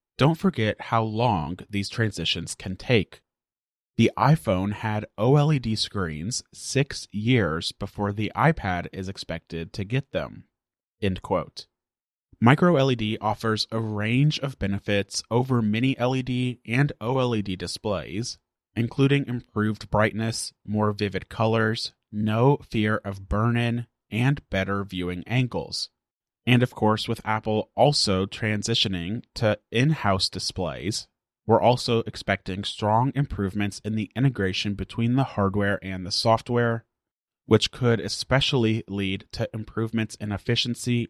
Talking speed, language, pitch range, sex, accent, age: 120 wpm, English, 100-120 Hz, male, American, 30-49